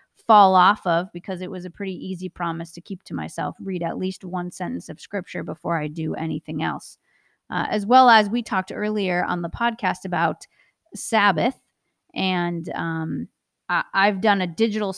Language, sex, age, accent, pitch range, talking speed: English, female, 30-49, American, 170-210 Hz, 180 wpm